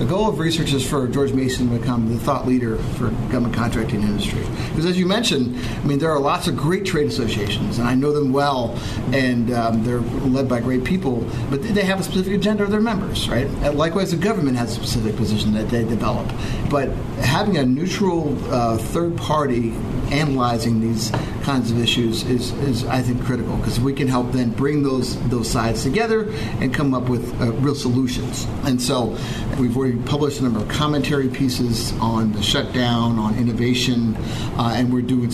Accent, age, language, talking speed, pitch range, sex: American, 50-69, English, 195 wpm, 115-135 Hz, male